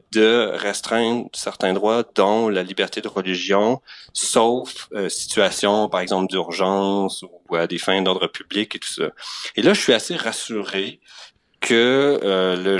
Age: 30-49